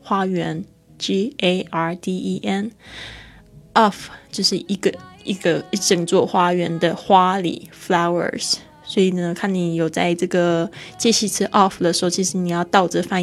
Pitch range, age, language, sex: 175-200 Hz, 20-39, Chinese, female